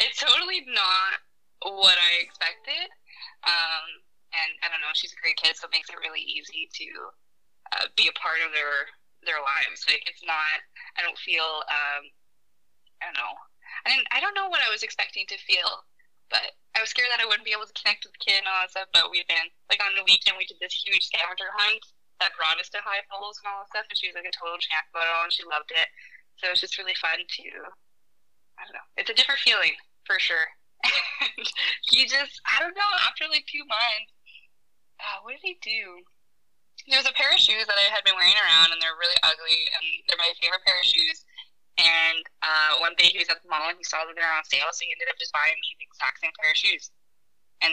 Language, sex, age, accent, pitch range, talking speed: English, female, 20-39, American, 165-265 Hz, 235 wpm